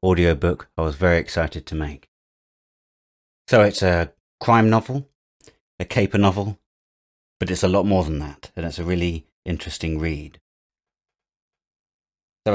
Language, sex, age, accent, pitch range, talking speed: English, male, 30-49, British, 85-105 Hz, 140 wpm